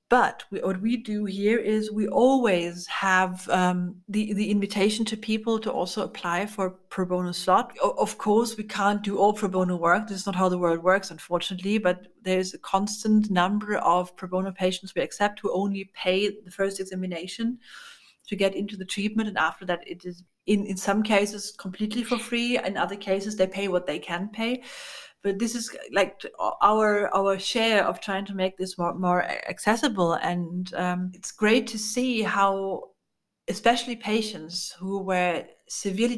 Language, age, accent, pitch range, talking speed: English, 40-59, German, 185-210 Hz, 180 wpm